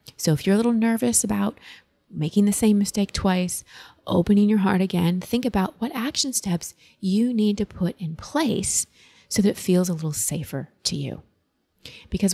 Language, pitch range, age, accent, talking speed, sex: English, 170-205 Hz, 30-49, American, 180 wpm, female